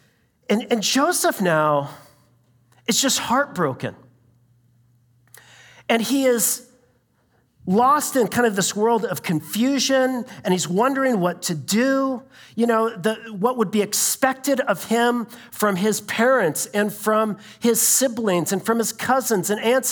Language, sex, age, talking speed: English, male, 40-59, 140 wpm